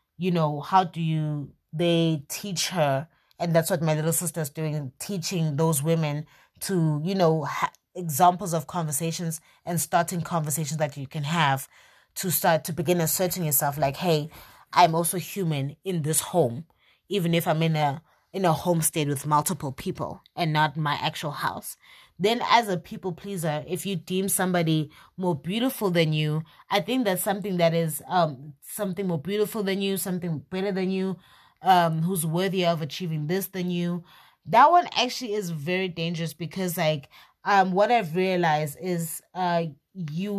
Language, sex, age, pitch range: English, female, 20-39, 155-185 Hz